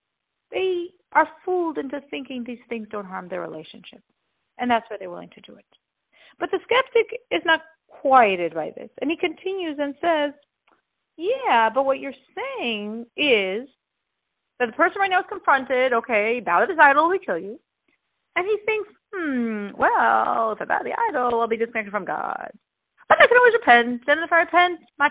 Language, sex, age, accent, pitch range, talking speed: English, female, 40-59, American, 230-370 Hz, 185 wpm